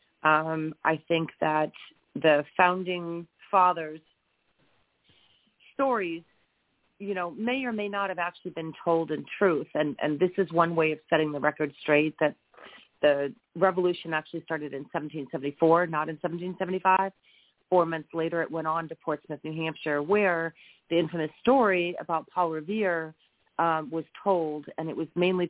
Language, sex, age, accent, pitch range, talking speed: English, female, 40-59, American, 160-185 Hz, 155 wpm